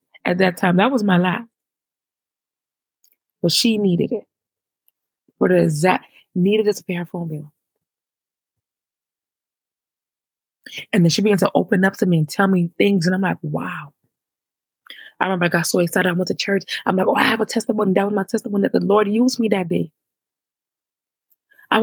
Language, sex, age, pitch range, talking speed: English, female, 20-39, 180-210 Hz, 185 wpm